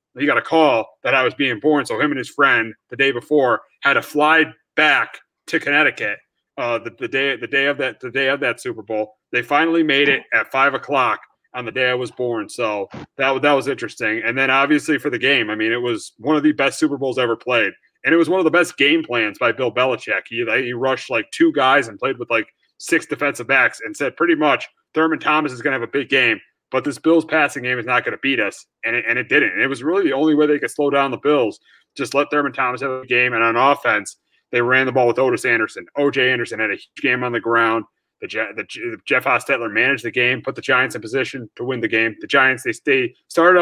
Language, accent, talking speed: English, American, 260 wpm